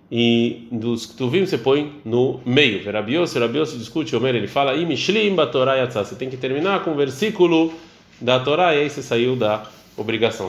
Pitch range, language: 120-145 Hz, Portuguese